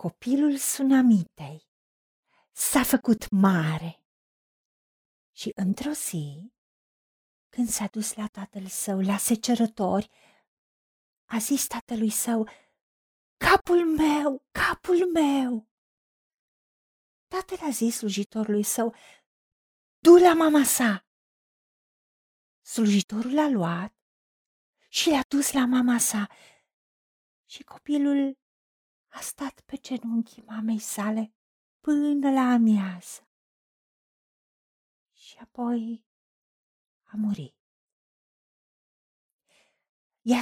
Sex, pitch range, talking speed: female, 205-275 Hz, 85 wpm